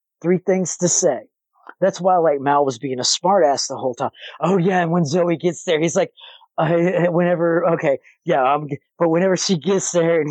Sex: male